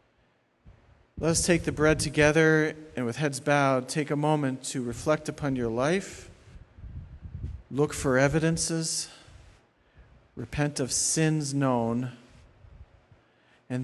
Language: English